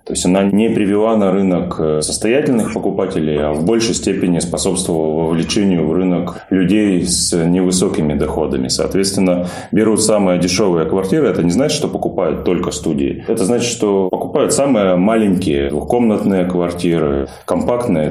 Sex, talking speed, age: male, 140 wpm, 20-39